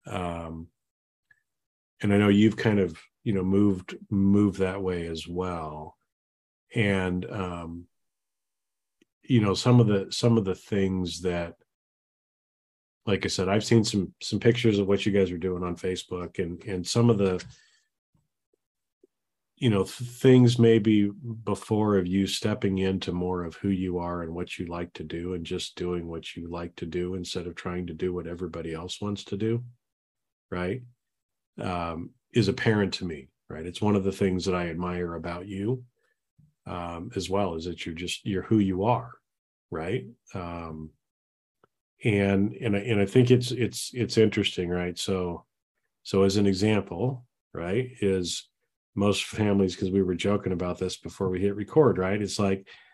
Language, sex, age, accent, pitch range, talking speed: English, male, 40-59, American, 90-110 Hz, 170 wpm